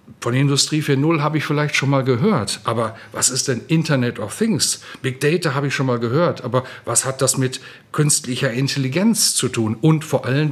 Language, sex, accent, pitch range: German, male, German, 120-145 Hz